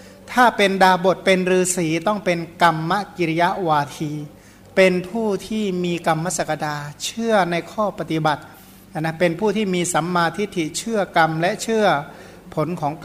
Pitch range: 160-200 Hz